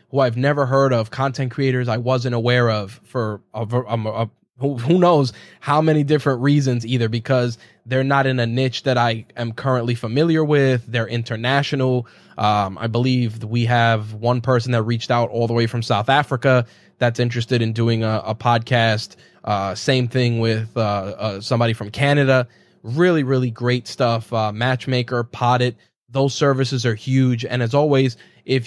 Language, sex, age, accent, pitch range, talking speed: English, male, 20-39, American, 115-135 Hz, 175 wpm